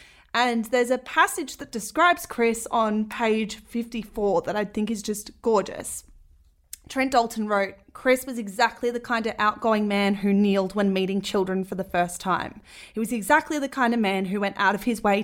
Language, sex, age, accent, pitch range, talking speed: English, female, 20-39, Australian, 210-270 Hz, 195 wpm